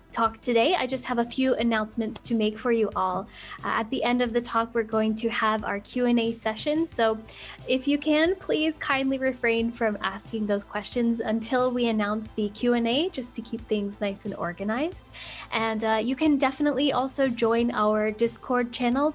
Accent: American